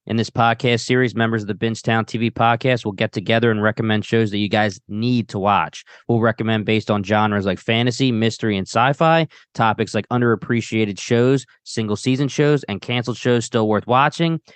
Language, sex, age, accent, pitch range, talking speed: English, male, 20-39, American, 110-130 Hz, 180 wpm